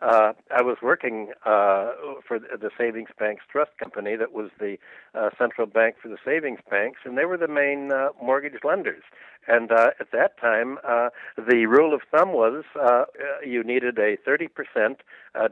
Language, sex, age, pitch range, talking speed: English, male, 60-79, 120-190 Hz, 180 wpm